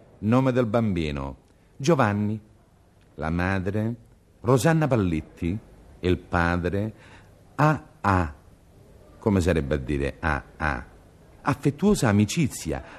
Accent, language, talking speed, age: native, Italian, 105 wpm, 50-69